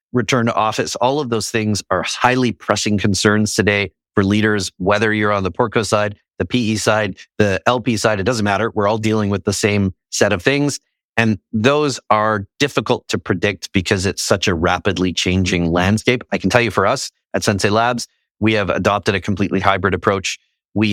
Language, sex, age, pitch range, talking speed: English, male, 30-49, 95-110 Hz, 195 wpm